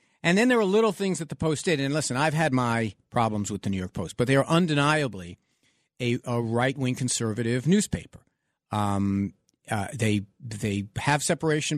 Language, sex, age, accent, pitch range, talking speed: English, male, 50-69, American, 115-155 Hz, 185 wpm